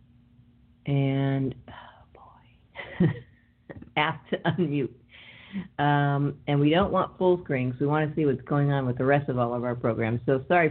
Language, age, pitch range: English, 50-69, 140-180 Hz